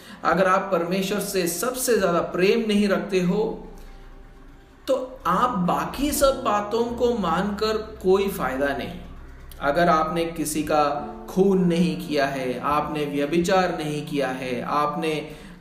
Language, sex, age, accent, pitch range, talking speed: Hindi, male, 50-69, native, 150-205 Hz, 130 wpm